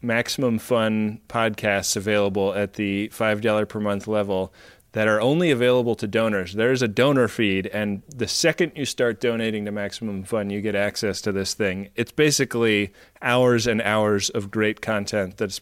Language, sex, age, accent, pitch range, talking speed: English, male, 30-49, American, 105-125 Hz, 170 wpm